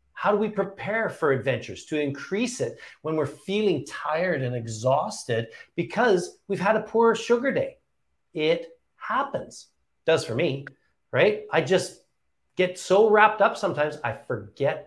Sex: male